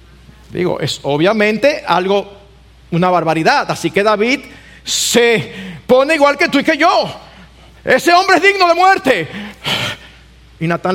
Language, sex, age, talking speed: Spanish, male, 50-69, 135 wpm